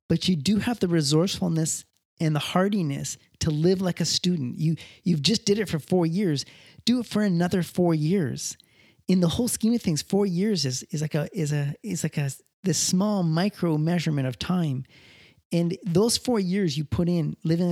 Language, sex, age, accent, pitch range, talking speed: English, male, 30-49, American, 145-180 Hz, 200 wpm